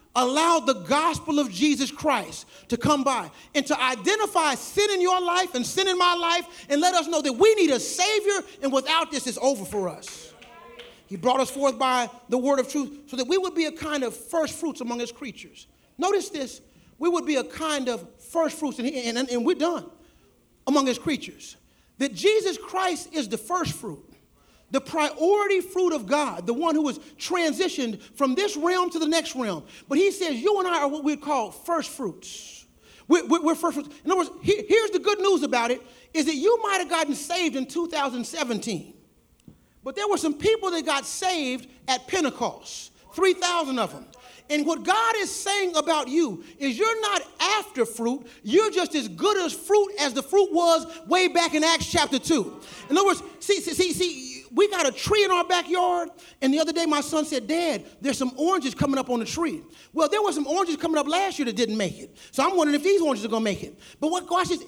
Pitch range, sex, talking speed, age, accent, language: 265-360 Hz, male, 215 wpm, 40-59, American, English